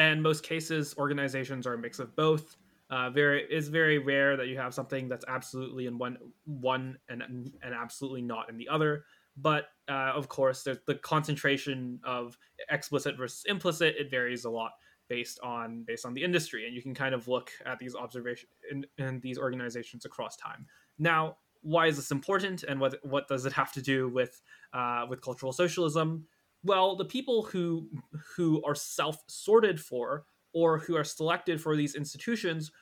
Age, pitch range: 20-39, 130-165 Hz